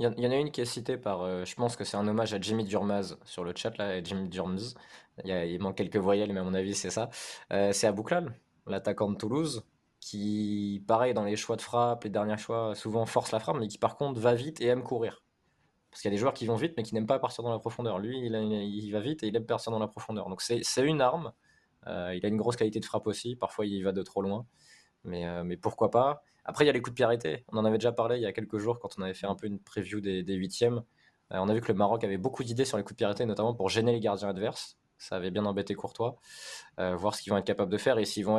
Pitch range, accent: 100-120 Hz, French